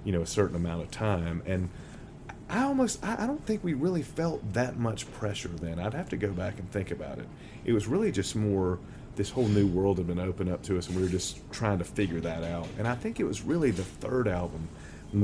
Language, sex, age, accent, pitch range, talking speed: English, male, 30-49, American, 85-105 Hz, 250 wpm